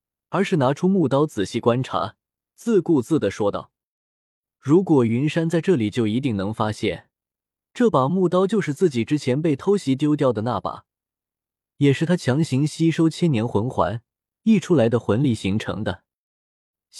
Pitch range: 110-165 Hz